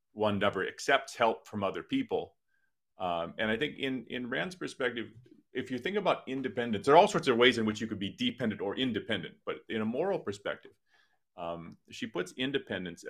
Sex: male